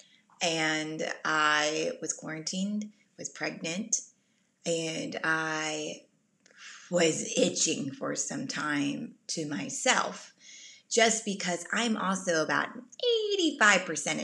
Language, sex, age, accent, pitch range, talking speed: English, female, 20-39, American, 160-230 Hz, 90 wpm